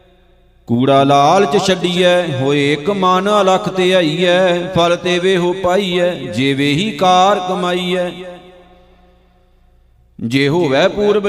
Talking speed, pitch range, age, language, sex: 140 wpm, 175-185 Hz, 50-69, Punjabi, male